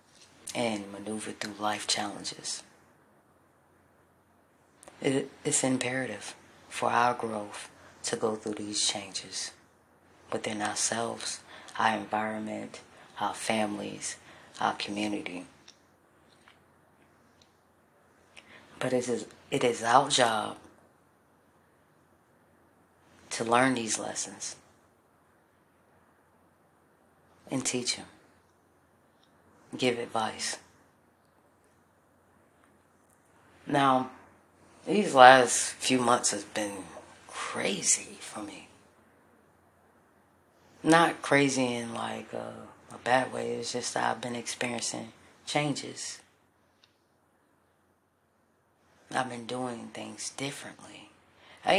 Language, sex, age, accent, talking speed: English, female, 40-59, American, 80 wpm